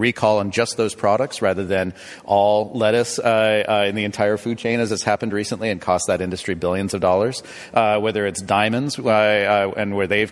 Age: 40-59